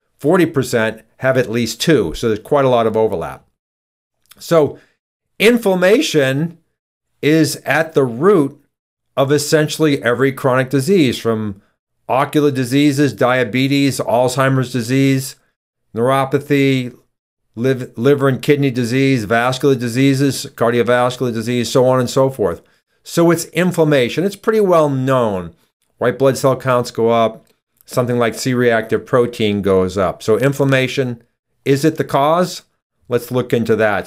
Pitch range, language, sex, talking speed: 120-145 Hz, English, male, 125 wpm